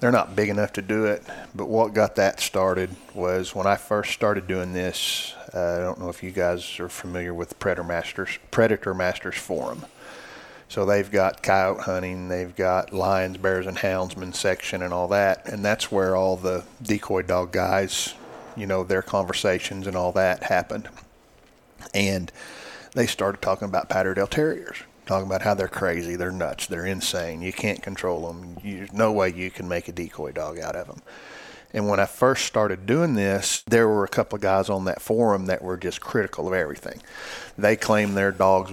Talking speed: 190 wpm